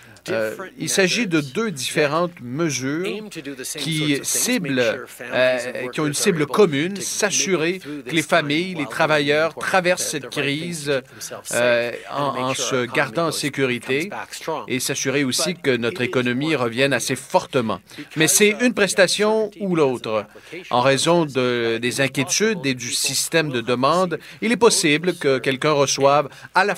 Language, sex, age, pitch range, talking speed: French, male, 40-59, 130-170 Hz, 145 wpm